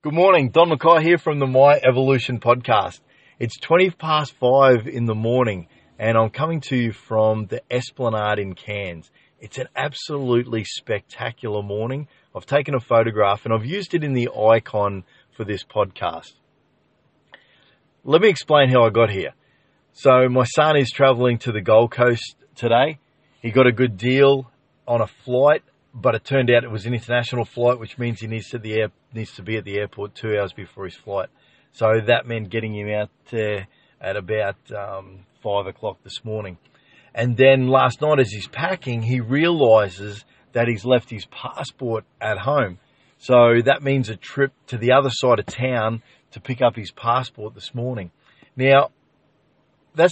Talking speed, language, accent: 175 wpm, English, Australian